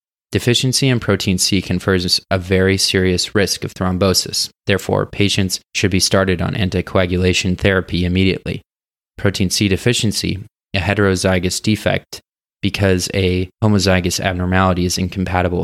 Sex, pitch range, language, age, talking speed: male, 90-100 Hz, English, 20-39, 125 wpm